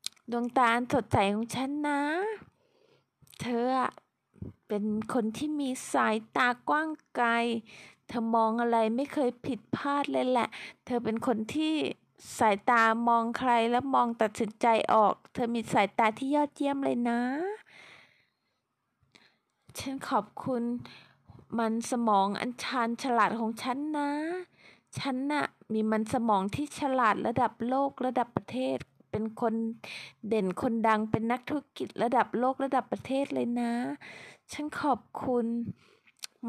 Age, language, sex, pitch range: 20-39, Thai, female, 230-275 Hz